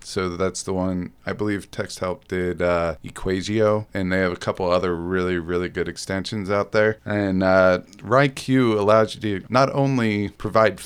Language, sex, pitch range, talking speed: English, male, 95-110 Hz, 170 wpm